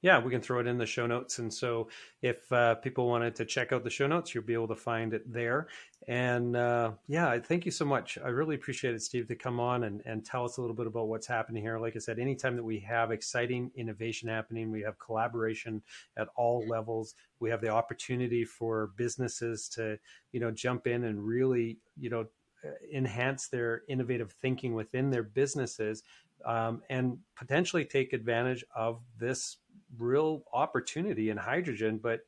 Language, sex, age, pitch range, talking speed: English, male, 40-59, 110-125 Hz, 195 wpm